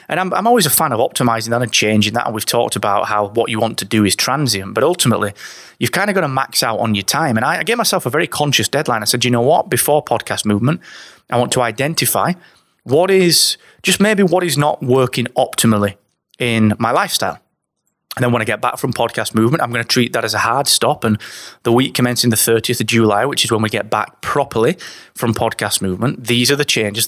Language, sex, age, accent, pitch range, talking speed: English, male, 30-49, British, 110-145 Hz, 240 wpm